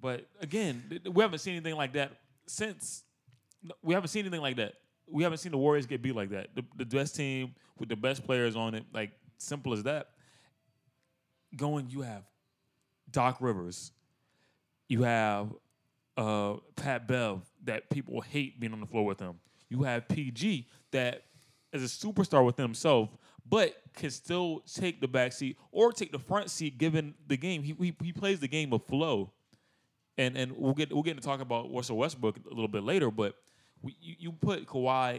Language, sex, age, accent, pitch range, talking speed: English, male, 20-39, American, 115-145 Hz, 190 wpm